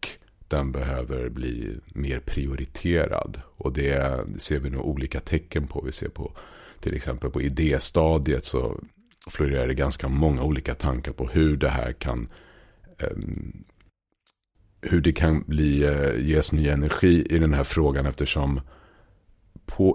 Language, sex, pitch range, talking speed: Swedish, male, 70-85 Hz, 135 wpm